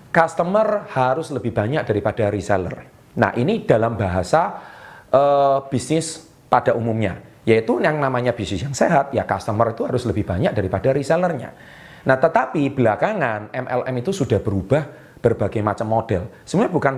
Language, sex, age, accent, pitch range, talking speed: Indonesian, male, 30-49, native, 115-165 Hz, 140 wpm